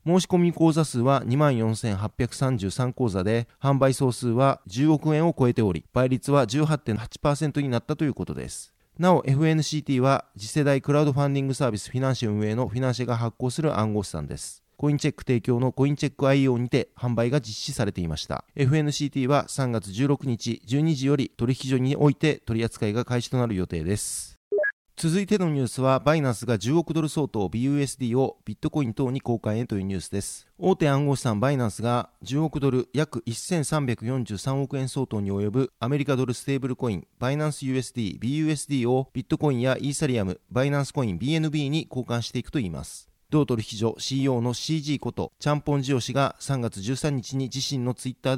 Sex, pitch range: male, 115-145 Hz